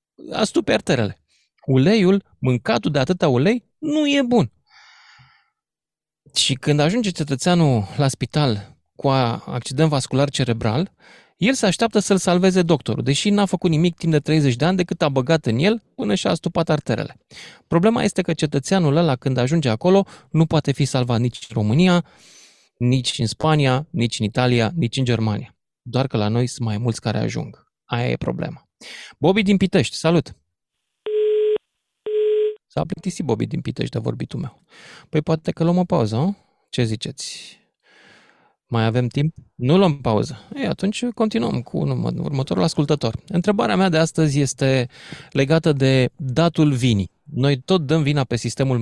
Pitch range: 125-180 Hz